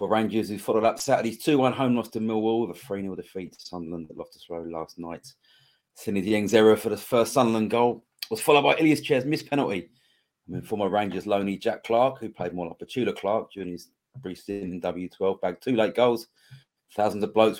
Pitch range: 95-120 Hz